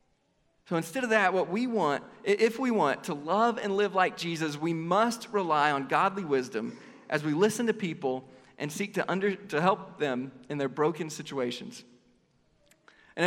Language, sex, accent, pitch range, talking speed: English, male, American, 150-205 Hz, 175 wpm